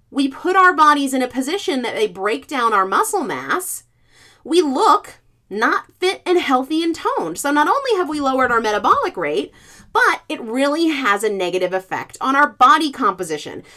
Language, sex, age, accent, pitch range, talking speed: English, female, 30-49, American, 245-365 Hz, 185 wpm